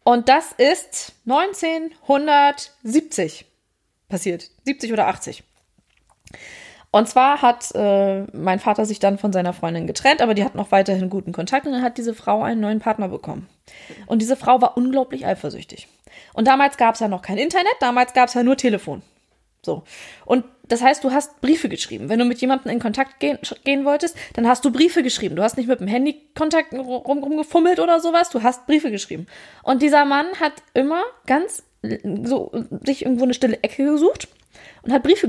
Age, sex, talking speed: 20-39, female, 180 wpm